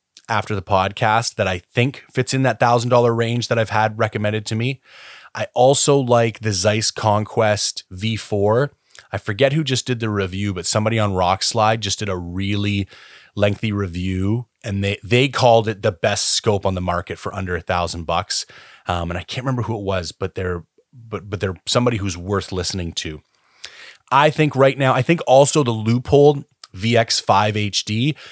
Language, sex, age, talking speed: English, male, 30-49, 190 wpm